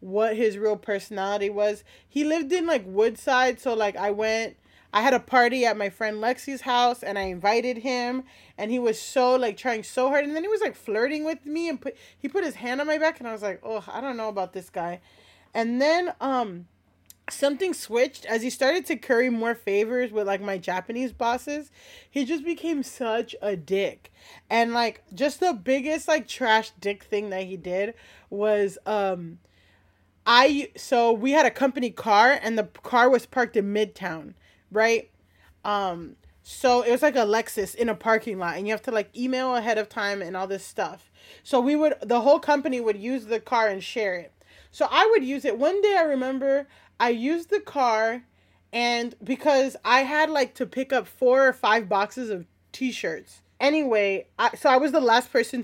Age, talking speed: 20-39, 200 wpm